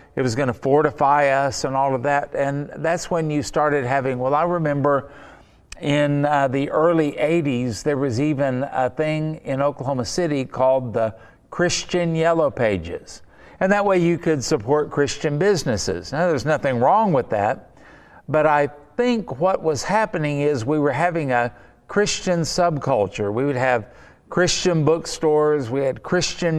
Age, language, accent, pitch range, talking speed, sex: 50-69, English, American, 130-165 Hz, 160 wpm, male